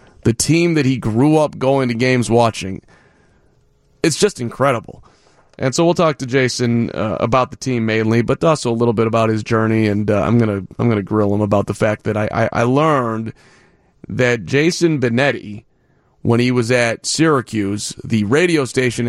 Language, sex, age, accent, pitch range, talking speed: English, male, 30-49, American, 110-135 Hz, 175 wpm